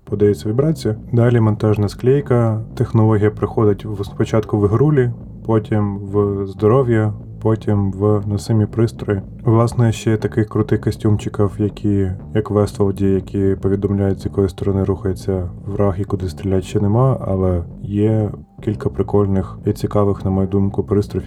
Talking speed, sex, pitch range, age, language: 135 wpm, male, 100-110 Hz, 20-39, Ukrainian